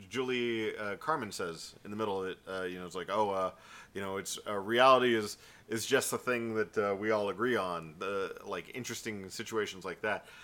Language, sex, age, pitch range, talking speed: English, male, 30-49, 95-120 Hz, 220 wpm